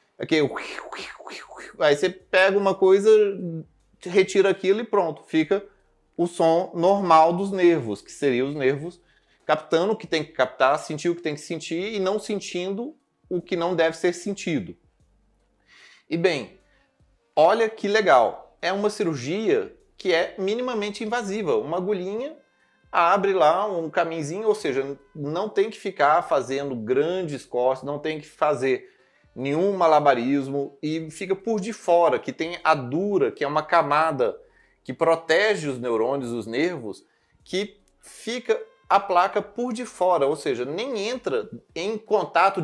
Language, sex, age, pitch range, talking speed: Portuguese, male, 30-49, 155-205 Hz, 150 wpm